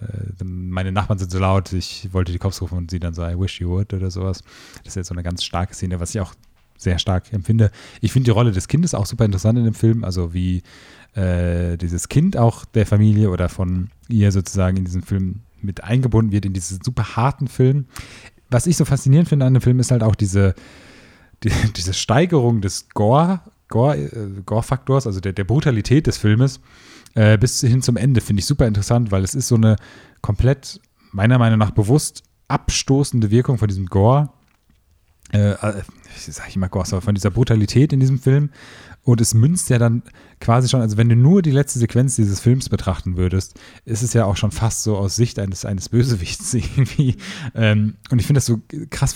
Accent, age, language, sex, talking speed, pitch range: German, 30-49, German, male, 200 wpm, 95-125 Hz